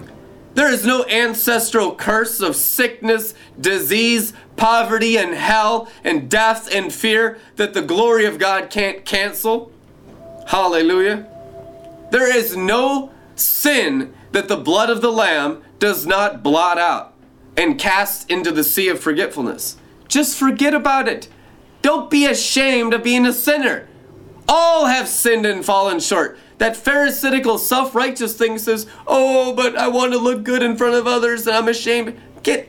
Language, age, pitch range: English, 30-49, 220-270 Hz